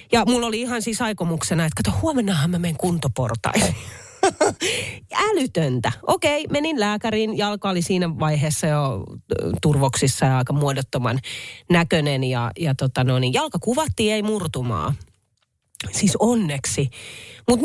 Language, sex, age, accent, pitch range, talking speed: Finnish, female, 30-49, native, 130-200 Hz, 135 wpm